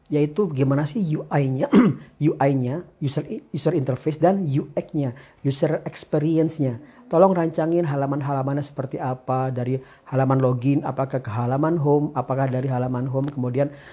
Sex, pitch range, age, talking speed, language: male, 120-150 Hz, 40-59, 125 wpm, Indonesian